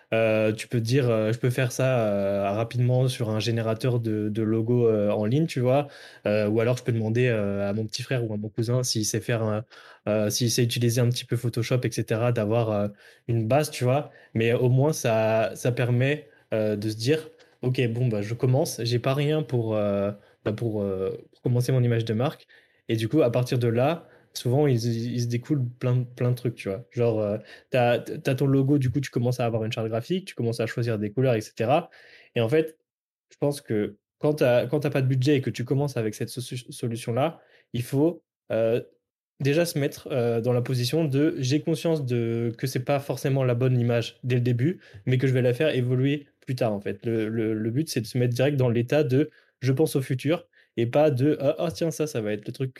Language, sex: French, male